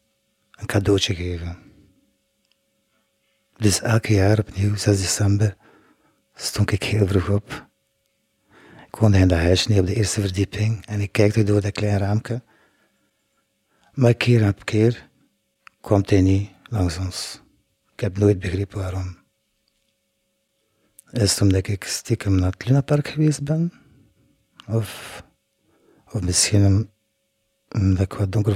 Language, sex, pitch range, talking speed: Dutch, male, 100-115 Hz, 130 wpm